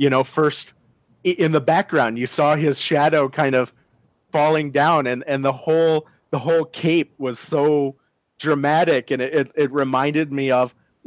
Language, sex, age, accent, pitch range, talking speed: English, male, 30-49, American, 125-150 Hz, 170 wpm